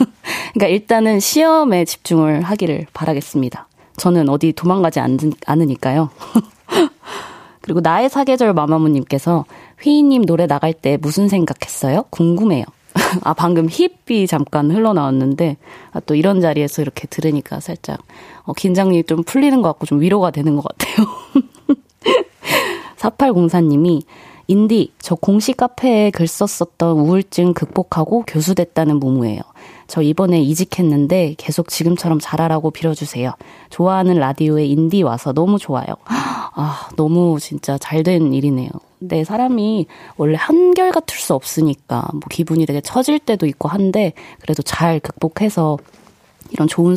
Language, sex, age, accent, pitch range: Korean, female, 20-39, native, 155-205 Hz